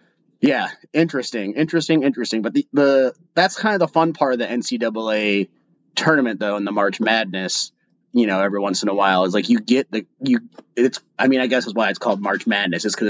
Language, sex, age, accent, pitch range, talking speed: English, male, 30-49, American, 110-165 Hz, 220 wpm